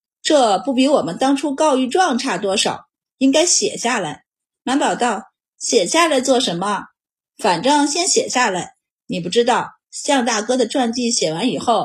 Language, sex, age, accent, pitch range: Chinese, female, 30-49, native, 225-285 Hz